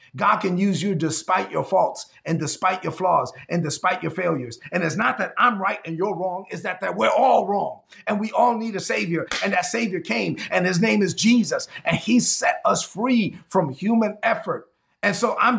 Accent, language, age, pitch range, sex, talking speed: American, English, 30-49, 190-265 Hz, male, 215 wpm